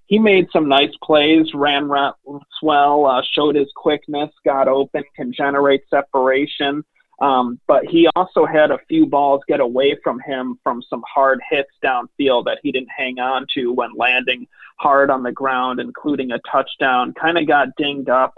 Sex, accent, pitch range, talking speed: male, American, 130-155 Hz, 175 wpm